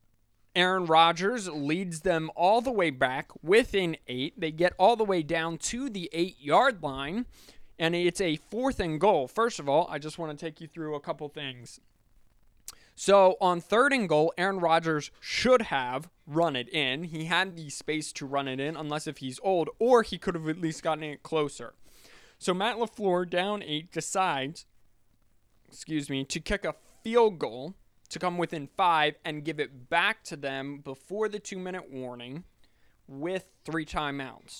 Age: 20-39